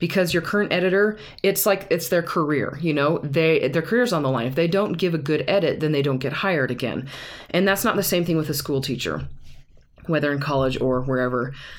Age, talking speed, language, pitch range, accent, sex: 20-39, 230 wpm, English, 135-180 Hz, American, female